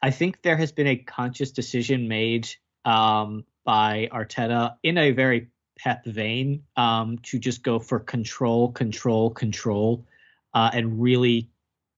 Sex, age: male, 20-39